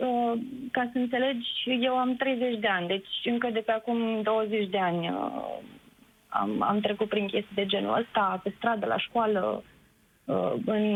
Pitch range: 210-250 Hz